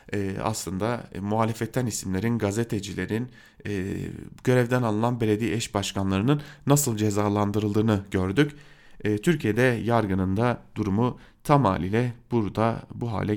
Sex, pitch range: male, 100-140 Hz